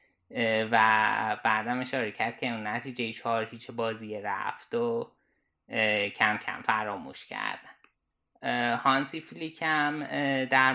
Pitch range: 115-135 Hz